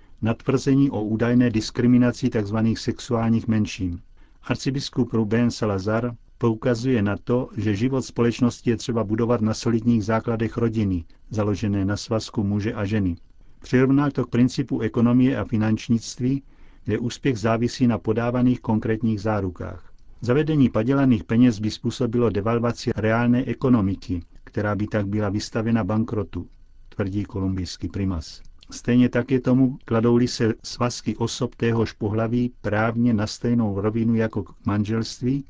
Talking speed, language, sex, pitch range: 130 wpm, Czech, male, 110-125 Hz